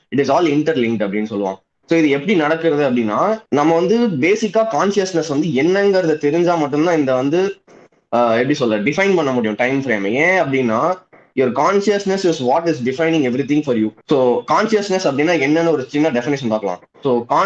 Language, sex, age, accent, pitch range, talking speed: Tamil, male, 20-39, native, 125-185 Hz, 140 wpm